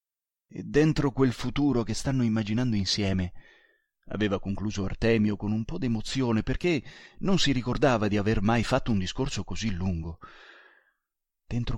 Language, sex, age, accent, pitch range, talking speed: Italian, male, 30-49, native, 95-125 Hz, 145 wpm